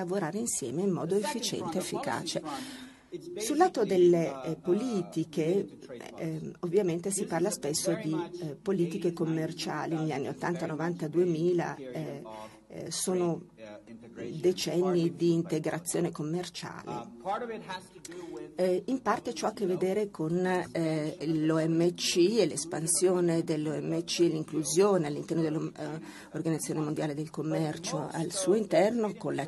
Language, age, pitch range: Italian, 40-59, 155-180 Hz